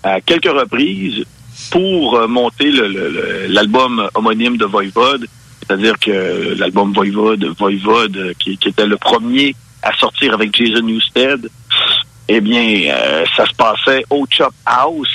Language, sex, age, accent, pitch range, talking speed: French, male, 50-69, French, 110-140 Hz, 140 wpm